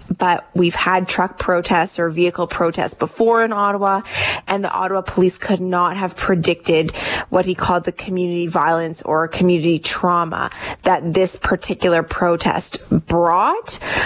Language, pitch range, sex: English, 175-195 Hz, female